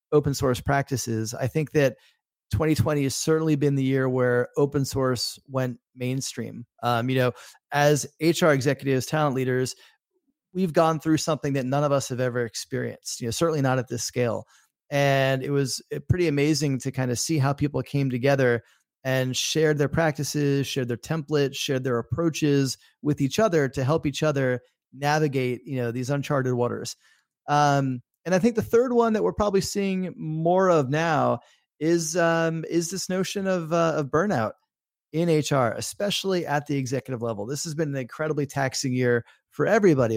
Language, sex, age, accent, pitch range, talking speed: English, male, 30-49, American, 130-155 Hz, 175 wpm